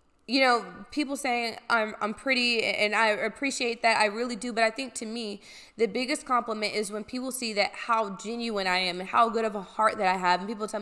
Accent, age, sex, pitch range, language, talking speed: American, 20-39, female, 205-245 Hz, English, 245 wpm